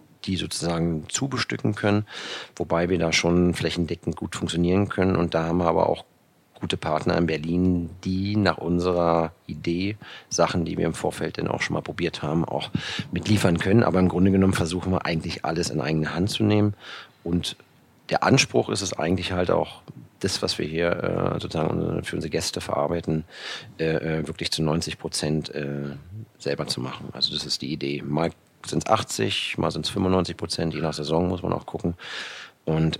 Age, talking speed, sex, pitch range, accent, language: 40-59, 175 wpm, male, 80-95 Hz, German, German